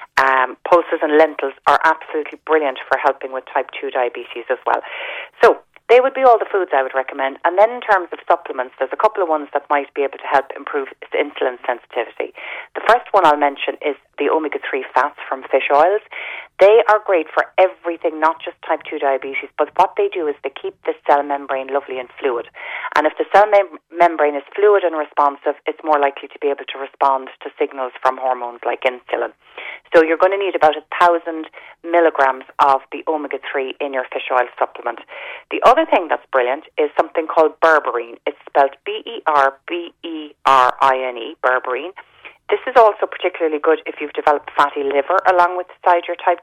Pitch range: 140-185 Hz